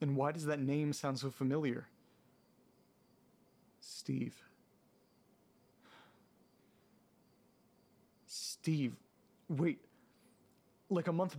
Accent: American